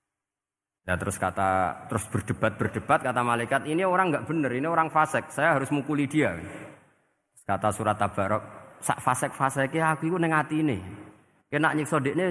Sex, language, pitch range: male, Indonesian, 110-150 Hz